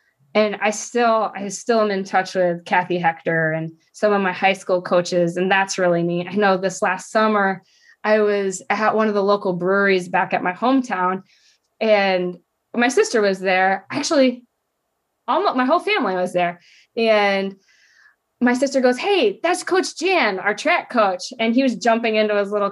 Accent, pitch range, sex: American, 185-230 Hz, female